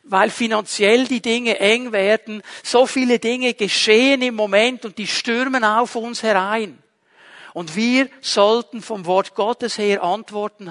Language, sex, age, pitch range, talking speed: German, male, 60-79, 200-245 Hz, 145 wpm